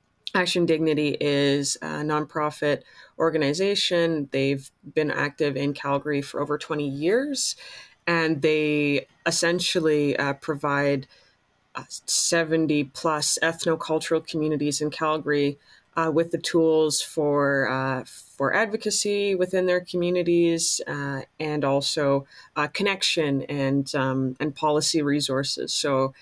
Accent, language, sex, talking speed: American, English, female, 110 wpm